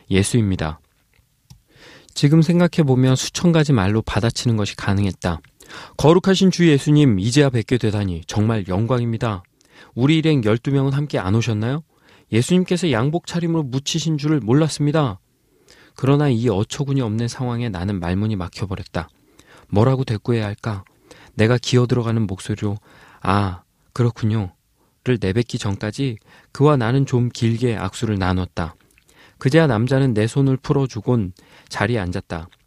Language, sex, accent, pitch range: Korean, male, native, 105-140 Hz